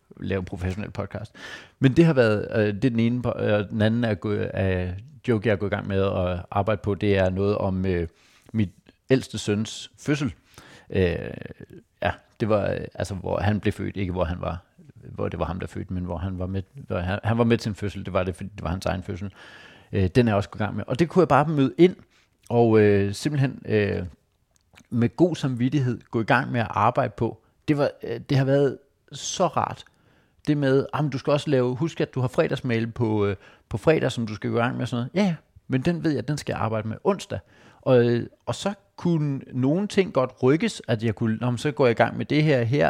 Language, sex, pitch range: Danish, male, 100-135 Hz